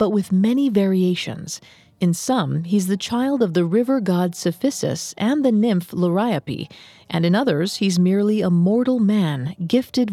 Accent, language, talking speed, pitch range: American, English, 160 wpm, 170-220 Hz